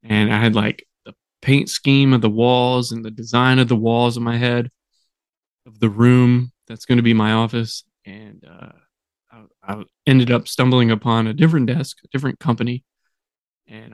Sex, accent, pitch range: male, American, 115-130 Hz